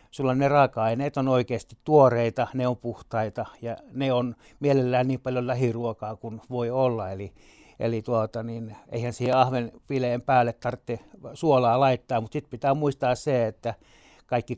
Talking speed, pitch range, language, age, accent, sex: 155 wpm, 115-135 Hz, Finnish, 60-79, native, male